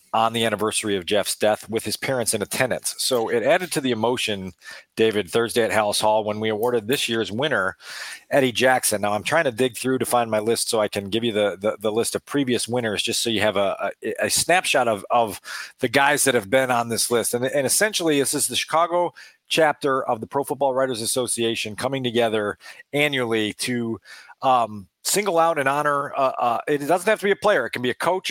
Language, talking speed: English, 225 wpm